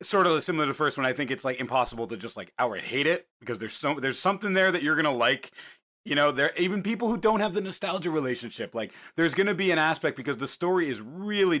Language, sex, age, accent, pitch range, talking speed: English, male, 30-49, American, 115-170 Hz, 275 wpm